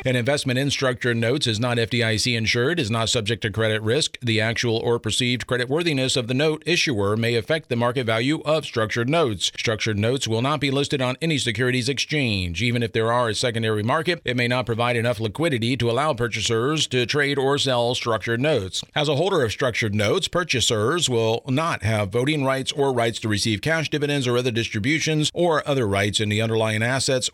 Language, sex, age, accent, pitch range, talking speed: English, male, 50-69, American, 115-140 Hz, 200 wpm